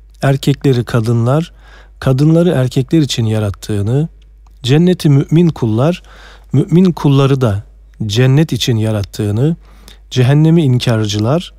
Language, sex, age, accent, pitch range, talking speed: Turkish, male, 40-59, native, 105-140 Hz, 90 wpm